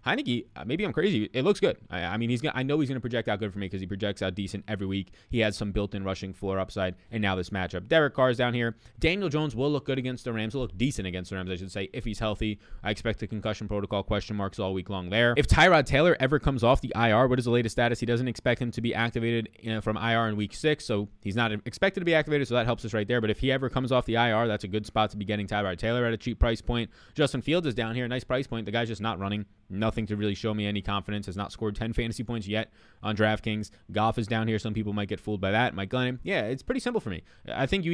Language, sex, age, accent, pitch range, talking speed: English, male, 20-39, American, 105-130 Hz, 300 wpm